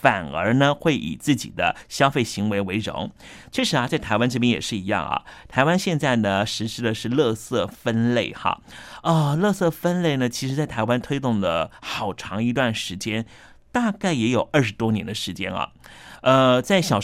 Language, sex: Chinese, male